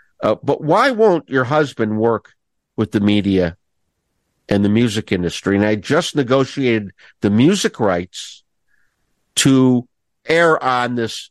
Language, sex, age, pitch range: English, male, 50-69, 100-135 Hz